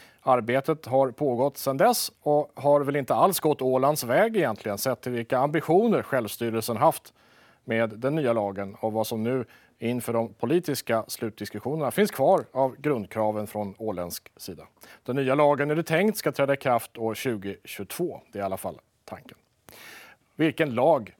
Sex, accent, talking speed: male, Norwegian, 165 wpm